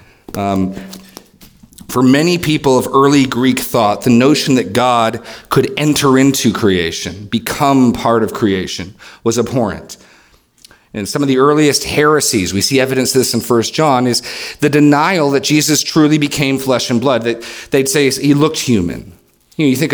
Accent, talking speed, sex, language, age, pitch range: American, 170 wpm, male, English, 40-59, 115-150 Hz